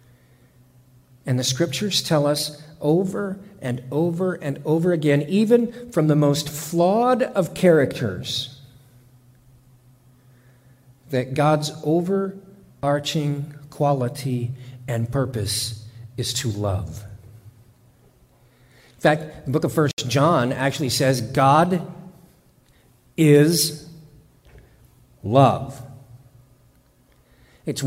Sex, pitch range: male, 125-165 Hz